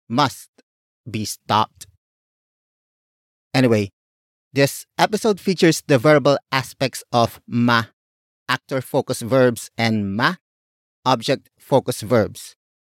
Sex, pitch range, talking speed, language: male, 110-145 Hz, 95 wpm, English